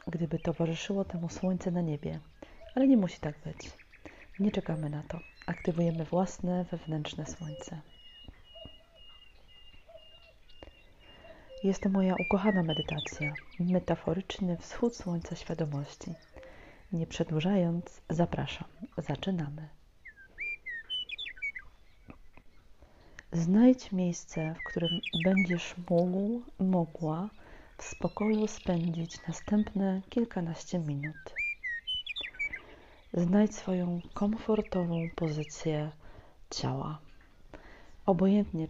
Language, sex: Polish, female